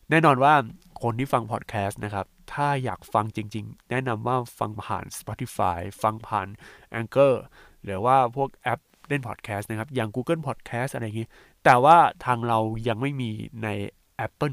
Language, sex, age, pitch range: Thai, male, 20-39, 110-140 Hz